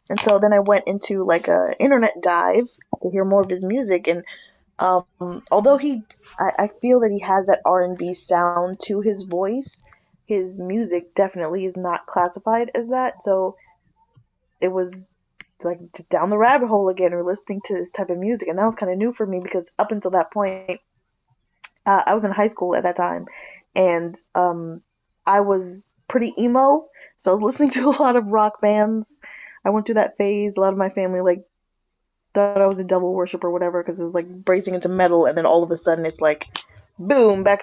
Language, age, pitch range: English, 20-39, 180-210 Hz